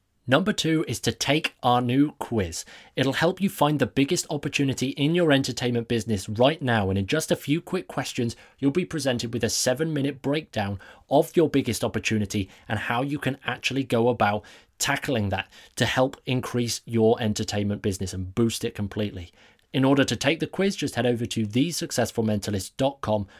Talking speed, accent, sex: 180 wpm, British, male